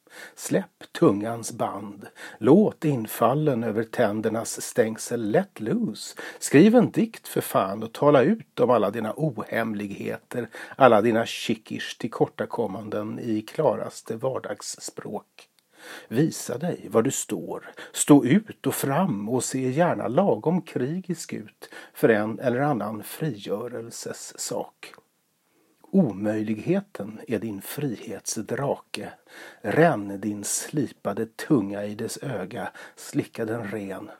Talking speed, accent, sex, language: 115 wpm, native, male, Swedish